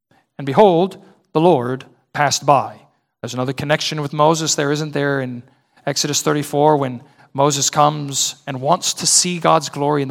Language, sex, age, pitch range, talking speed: English, male, 40-59, 140-180 Hz, 160 wpm